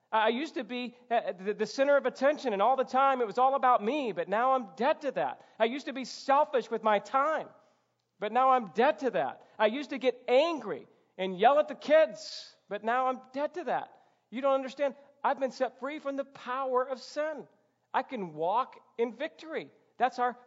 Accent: American